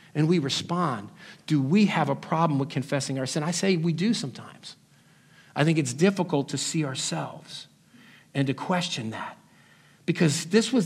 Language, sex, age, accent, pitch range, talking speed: English, male, 50-69, American, 140-175 Hz, 170 wpm